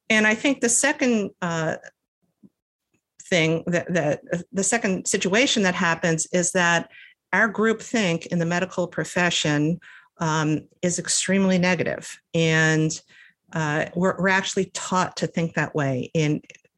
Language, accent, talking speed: English, American, 135 wpm